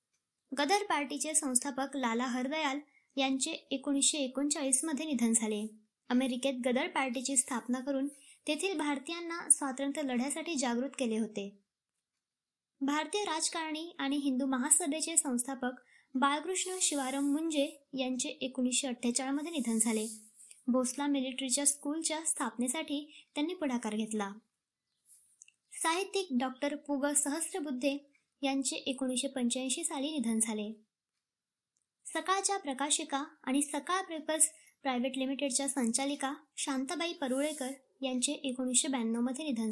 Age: 20-39